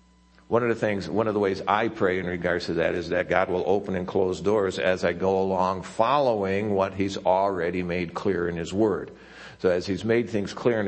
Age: 50-69